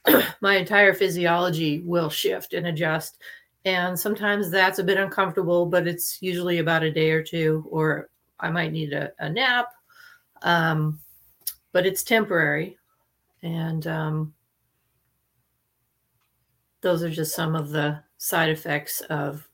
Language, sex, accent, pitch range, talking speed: English, female, American, 155-190 Hz, 130 wpm